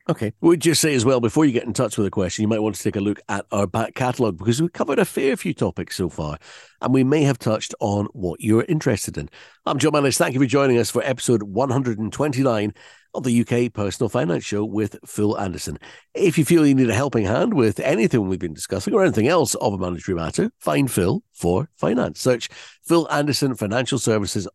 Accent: British